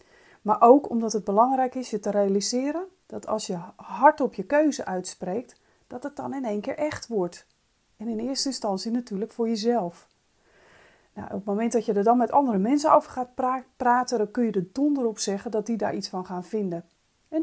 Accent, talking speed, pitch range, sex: Dutch, 215 wpm, 195-250 Hz, female